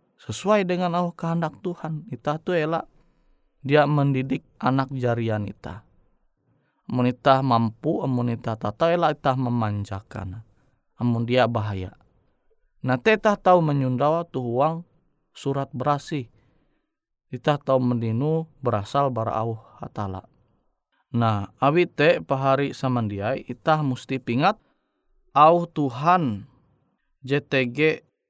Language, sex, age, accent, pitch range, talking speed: Indonesian, male, 20-39, native, 115-155 Hz, 100 wpm